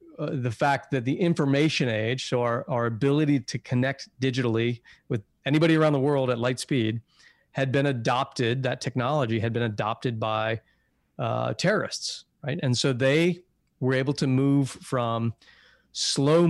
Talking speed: 155 wpm